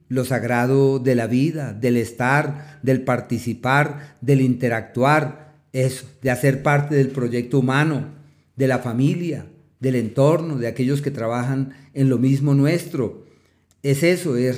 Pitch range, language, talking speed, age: 125-150 Hz, Spanish, 135 wpm, 40-59